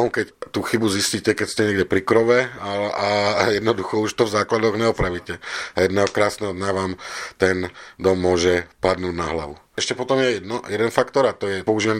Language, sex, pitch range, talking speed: Slovak, male, 95-110 Hz, 185 wpm